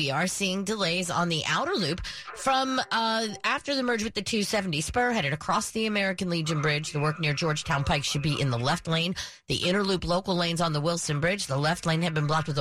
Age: 40-59